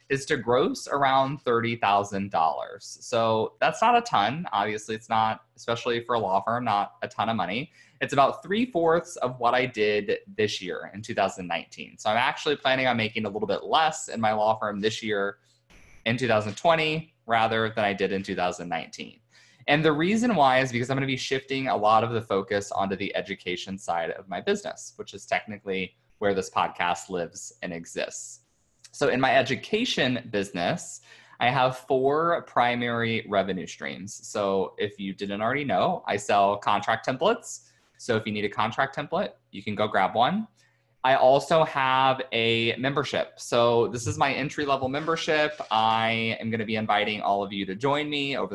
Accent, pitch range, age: American, 105-135 Hz, 20-39